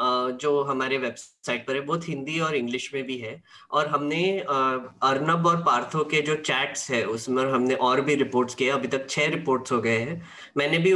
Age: 20-39